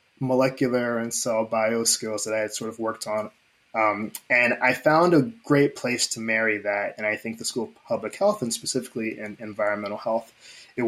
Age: 20-39